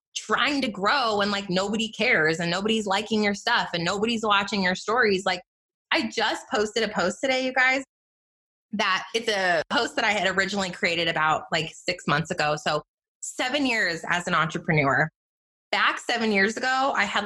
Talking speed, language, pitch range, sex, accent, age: 180 wpm, English, 190-240 Hz, female, American, 20-39